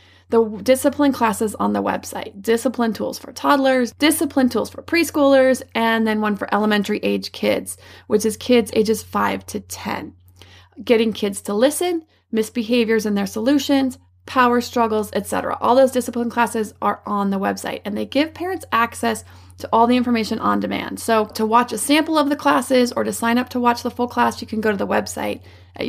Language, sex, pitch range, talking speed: English, female, 205-250 Hz, 190 wpm